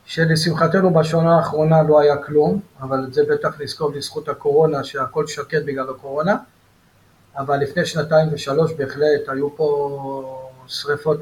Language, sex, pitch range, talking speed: English, male, 145-180 Hz, 130 wpm